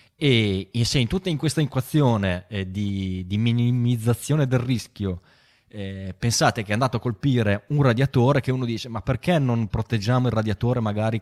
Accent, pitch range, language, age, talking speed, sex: native, 100-120 Hz, Italian, 20-39, 170 wpm, male